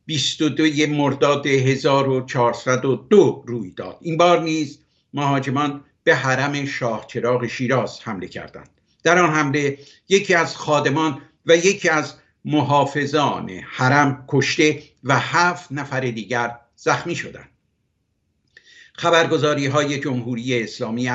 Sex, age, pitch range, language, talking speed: male, 60-79, 135-170 Hz, Persian, 105 wpm